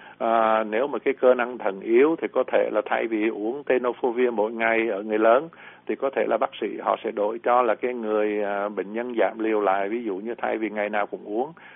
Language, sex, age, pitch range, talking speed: Vietnamese, male, 60-79, 105-125 Hz, 250 wpm